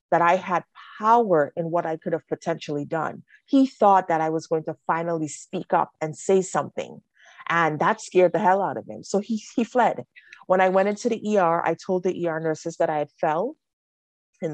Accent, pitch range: American, 155-185 Hz